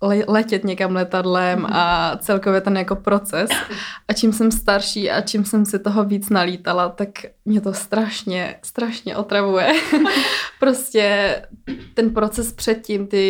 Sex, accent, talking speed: female, native, 135 wpm